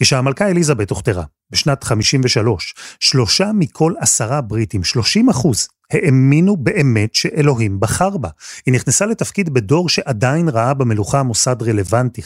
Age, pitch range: 30-49, 115-160 Hz